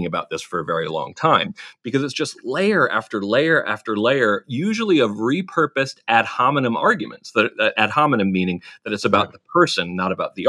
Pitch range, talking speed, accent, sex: 105-155 Hz, 185 wpm, American, male